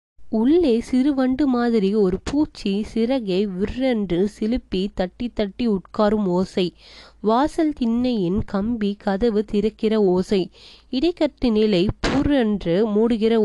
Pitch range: 190-245 Hz